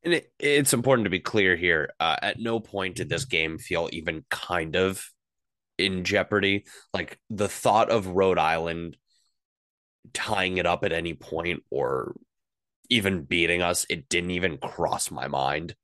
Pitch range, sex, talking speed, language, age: 85-105 Hz, male, 160 wpm, English, 20-39